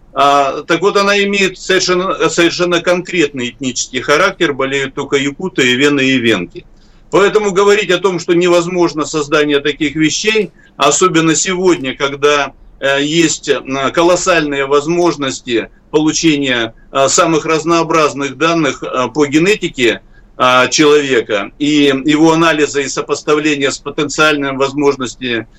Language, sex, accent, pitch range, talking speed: Russian, male, native, 140-180 Hz, 105 wpm